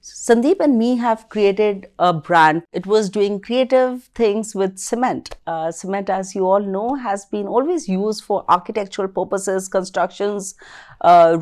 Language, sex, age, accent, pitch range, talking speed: Hindi, female, 40-59, native, 180-235 Hz, 150 wpm